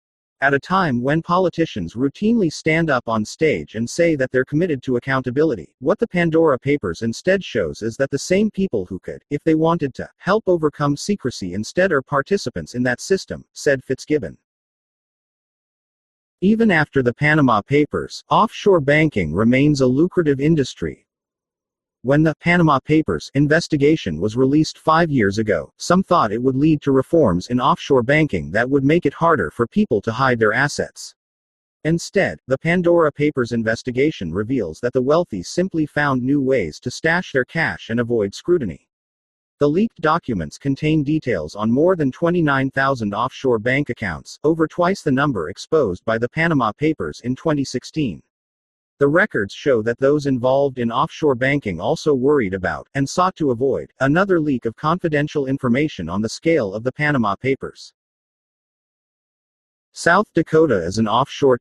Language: English